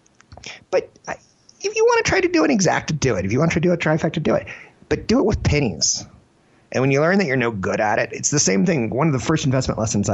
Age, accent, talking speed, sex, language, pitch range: 30-49, American, 270 wpm, male, English, 100-145 Hz